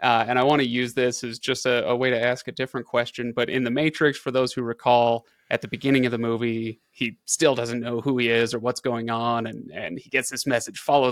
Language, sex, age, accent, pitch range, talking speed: English, male, 30-49, American, 120-140 Hz, 265 wpm